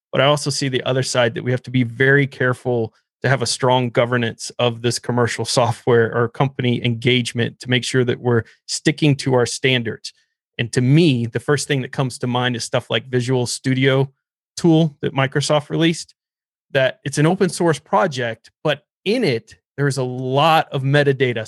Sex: male